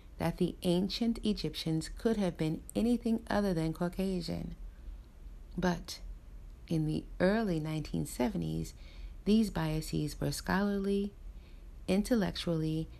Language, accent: English, American